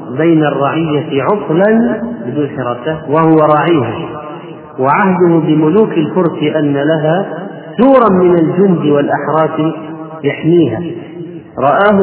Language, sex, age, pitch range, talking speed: Arabic, male, 40-59, 140-170 Hz, 80 wpm